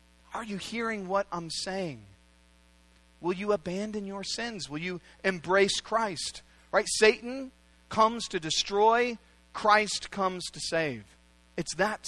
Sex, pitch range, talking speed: male, 135-220 Hz, 130 wpm